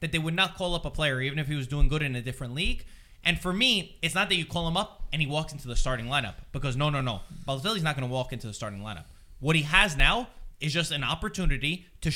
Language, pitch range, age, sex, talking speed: English, 130-170 Hz, 20-39, male, 280 wpm